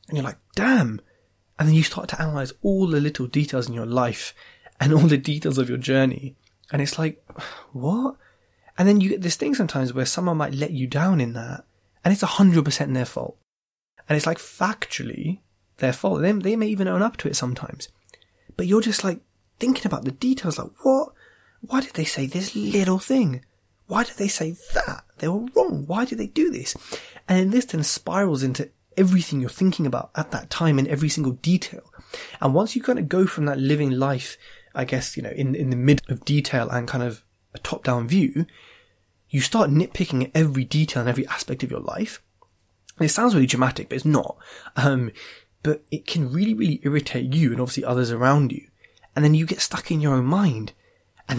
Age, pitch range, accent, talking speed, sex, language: 20-39, 130-185 Hz, British, 210 wpm, male, English